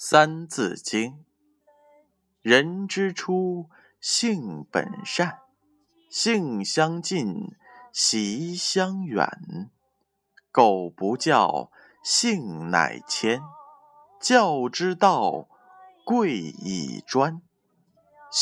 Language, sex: Chinese, male